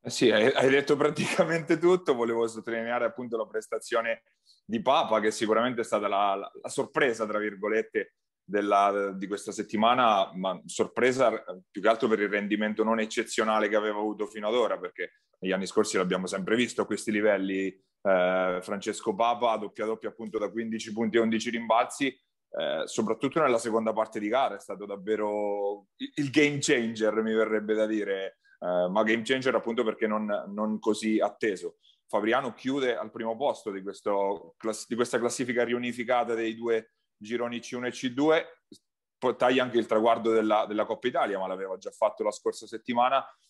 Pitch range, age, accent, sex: 105-125 Hz, 30-49, native, male